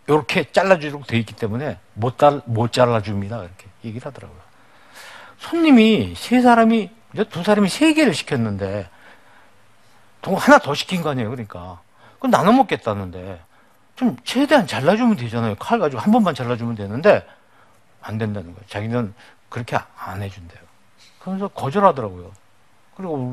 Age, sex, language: 50-69, male, Korean